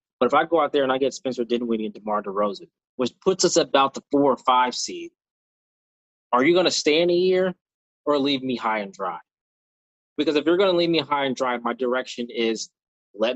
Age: 20-39